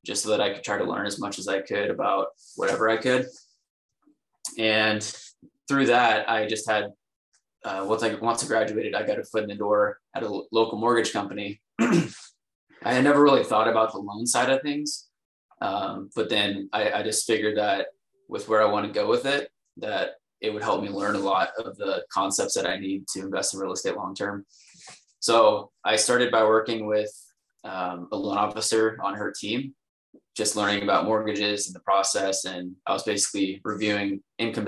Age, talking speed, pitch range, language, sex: 20-39, 195 wpm, 100-115 Hz, English, male